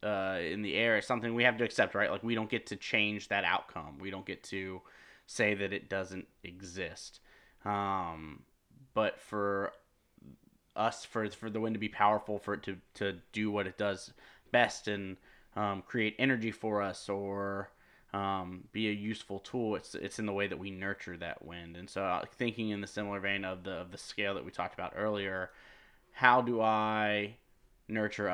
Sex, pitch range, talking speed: male, 95-110 Hz, 195 wpm